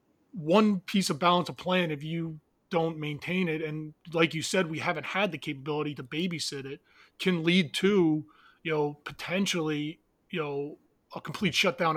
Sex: male